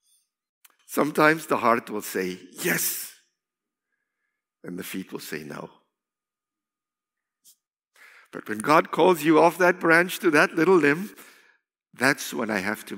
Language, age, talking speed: English, 60-79, 135 wpm